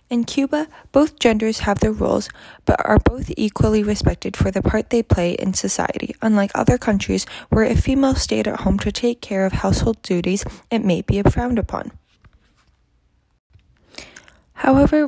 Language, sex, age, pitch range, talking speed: English, female, 10-29, 195-255 Hz, 160 wpm